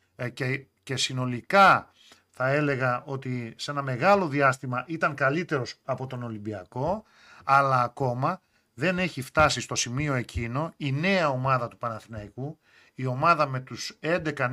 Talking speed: 130 wpm